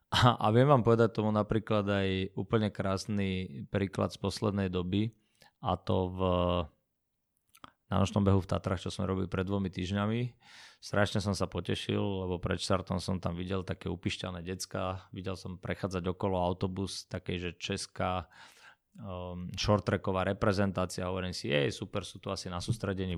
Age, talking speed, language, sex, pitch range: 20-39, 155 wpm, Slovak, male, 95-105 Hz